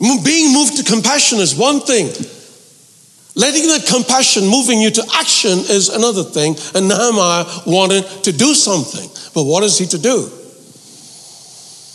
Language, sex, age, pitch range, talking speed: English, male, 60-79, 170-240 Hz, 145 wpm